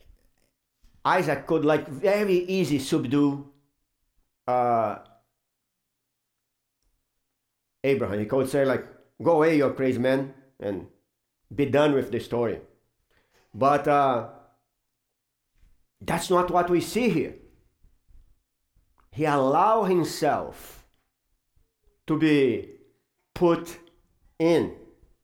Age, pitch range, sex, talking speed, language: 50-69, 125-170 Hz, male, 90 wpm, English